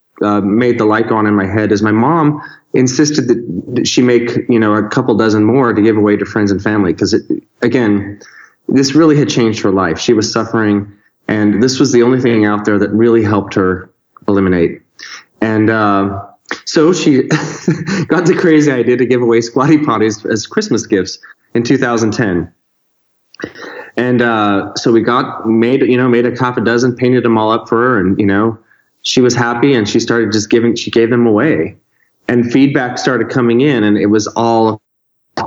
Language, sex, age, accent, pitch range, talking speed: English, male, 30-49, American, 105-130 Hz, 195 wpm